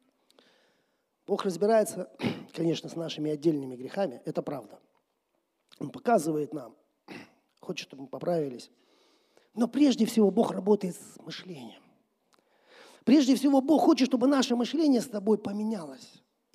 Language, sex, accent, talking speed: Russian, male, native, 120 wpm